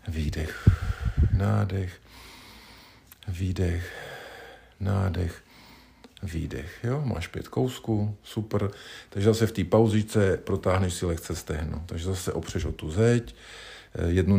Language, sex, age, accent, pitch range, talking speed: Czech, male, 50-69, native, 80-100 Hz, 110 wpm